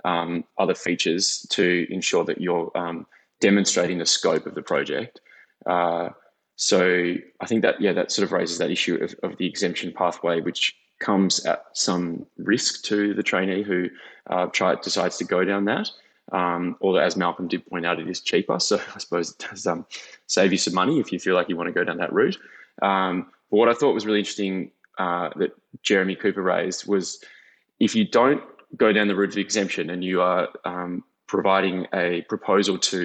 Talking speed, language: 200 wpm, English